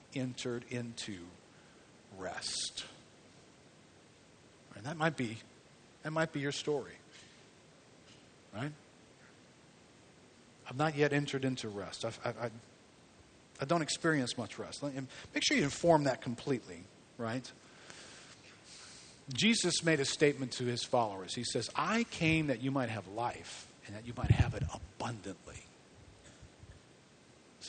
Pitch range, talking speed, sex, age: 120-150 Hz, 130 wpm, male, 50-69